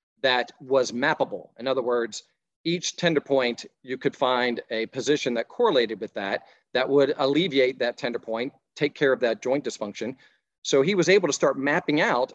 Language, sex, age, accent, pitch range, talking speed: English, male, 40-59, American, 120-150 Hz, 185 wpm